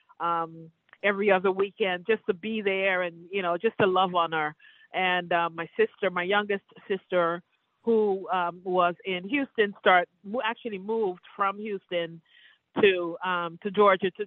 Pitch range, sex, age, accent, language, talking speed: 170-205 Hz, female, 50-69, American, English, 160 wpm